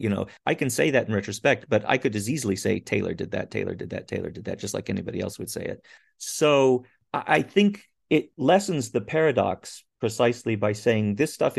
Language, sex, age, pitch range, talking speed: English, male, 40-59, 100-130 Hz, 220 wpm